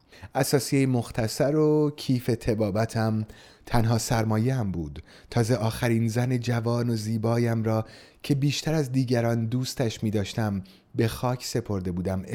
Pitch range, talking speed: 105-130 Hz, 125 wpm